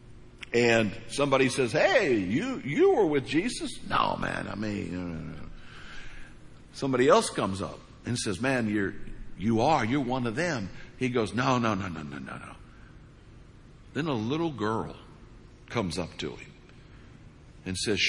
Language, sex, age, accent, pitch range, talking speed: English, male, 60-79, American, 105-140 Hz, 165 wpm